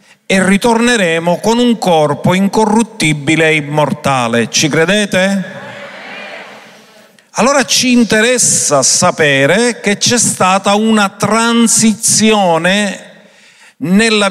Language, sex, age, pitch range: Italian, male, 50-69, 185-225 Hz